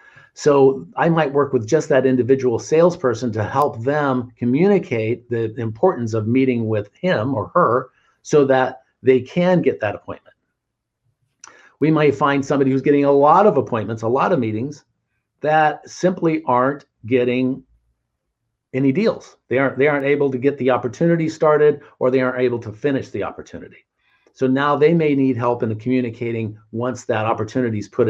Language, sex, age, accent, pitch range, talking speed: English, male, 50-69, American, 115-145 Hz, 170 wpm